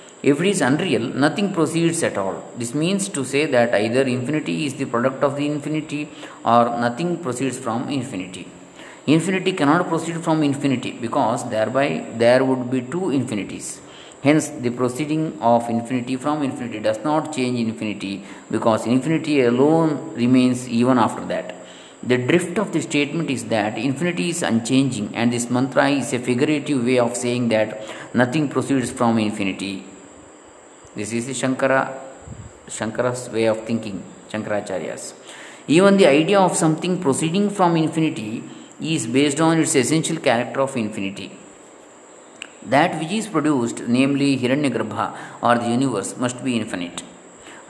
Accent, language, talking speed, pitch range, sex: native, Kannada, 150 wpm, 115-150 Hz, male